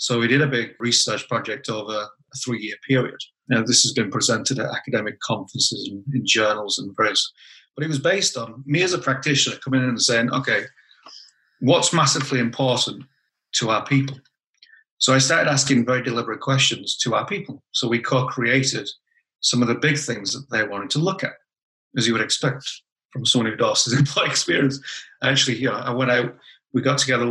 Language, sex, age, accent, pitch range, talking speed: English, male, 30-49, British, 120-140 Hz, 190 wpm